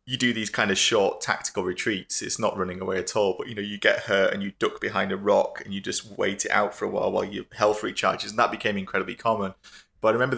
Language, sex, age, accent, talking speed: English, male, 20-39, British, 270 wpm